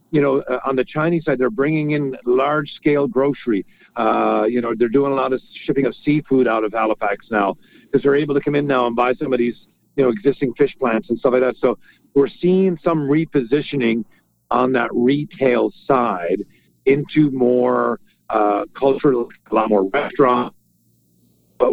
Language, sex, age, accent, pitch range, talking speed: English, male, 50-69, American, 120-155 Hz, 180 wpm